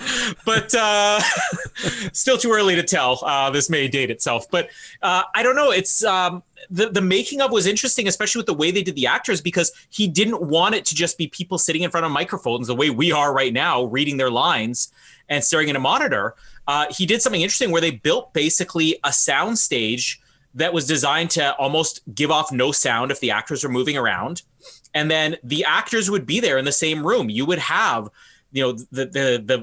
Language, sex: English, male